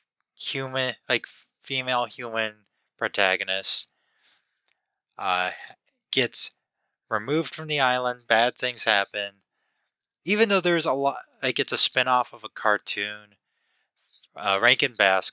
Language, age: English, 20-39